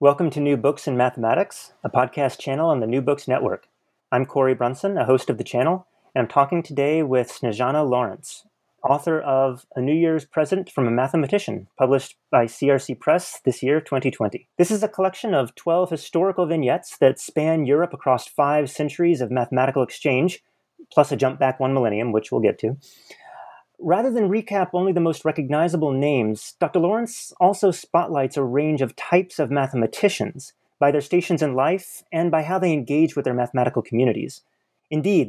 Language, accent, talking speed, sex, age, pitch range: English, American, 180 wpm, male, 30-49, 130-165 Hz